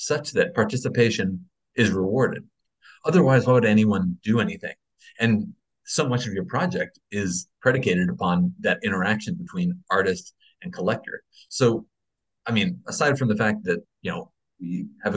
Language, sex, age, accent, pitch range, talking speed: English, male, 30-49, American, 95-135 Hz, 150 wpm